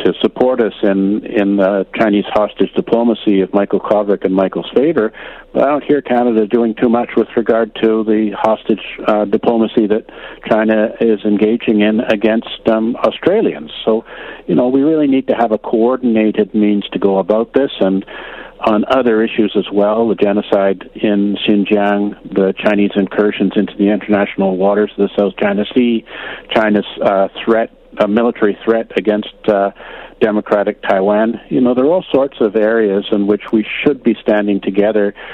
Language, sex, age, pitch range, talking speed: English, male, 50-69, 100-115 Hz, 170 wpm